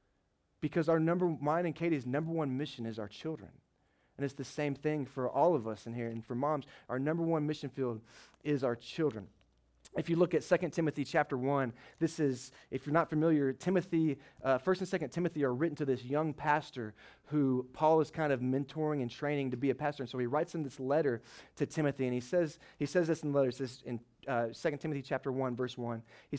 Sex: male